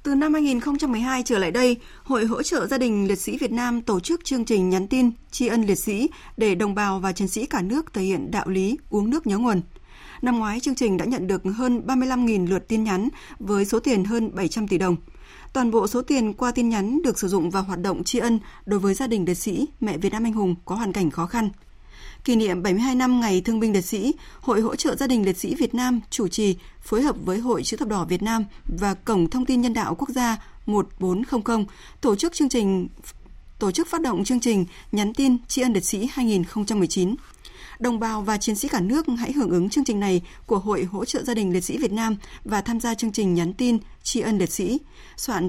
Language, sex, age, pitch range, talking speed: Vietnamese, female, 20-39, 195-250 Hz, 240 wpm